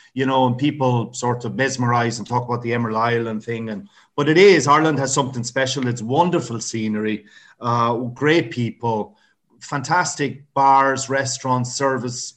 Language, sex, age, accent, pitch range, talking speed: English, male, 30-49, Irish, 110-135 Hz, 155 wpm